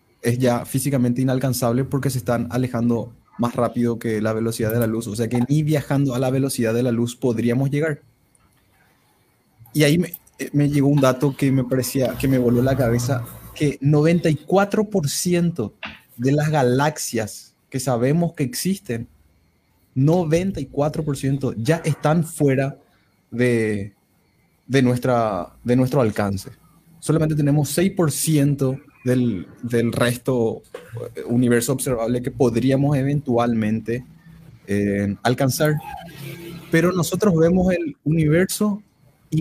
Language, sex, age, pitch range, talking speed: Spanish, male, 20-39, 120-155 Hz, 125 wpm